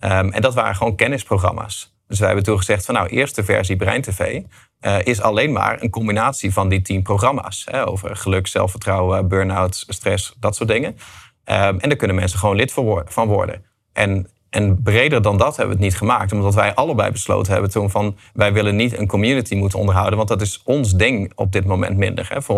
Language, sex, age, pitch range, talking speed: Dutch, male, 30-49, 95-110 Hz, 210 wpm